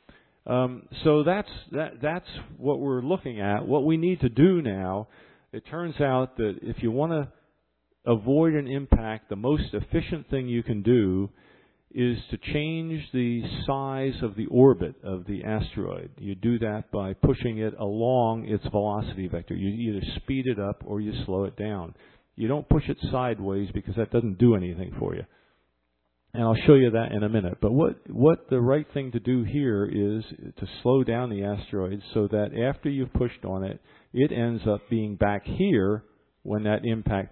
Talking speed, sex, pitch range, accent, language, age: 185 wpm, male, 105-135 Hz, American, English, 50-69